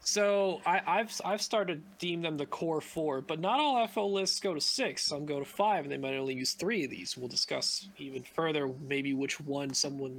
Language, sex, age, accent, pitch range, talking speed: English, male, 20-39, American, 145-200 Hz, 230 wpm